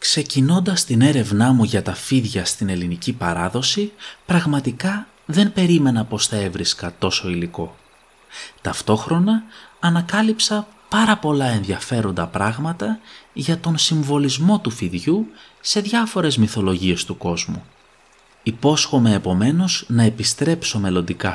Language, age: Greek, 30-49